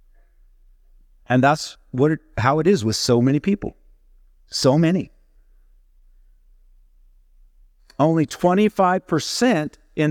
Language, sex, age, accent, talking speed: English, male, 50-69, American, 95 wpm